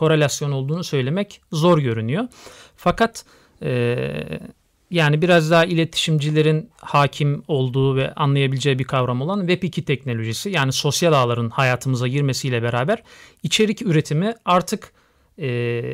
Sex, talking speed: male, 115 wpm